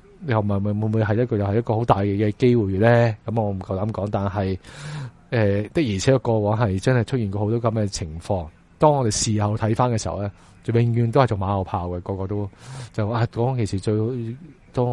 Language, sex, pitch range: Chinese, male, 100-120 Hz